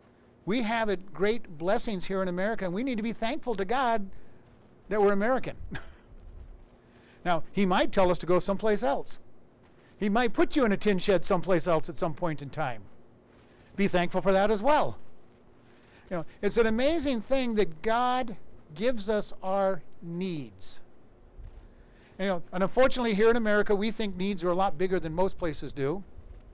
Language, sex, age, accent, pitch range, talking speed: English, male, 60-79, American, 170-210 Hz, 175 wpm